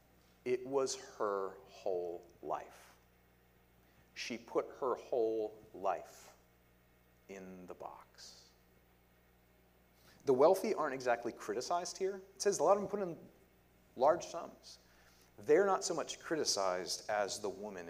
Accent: American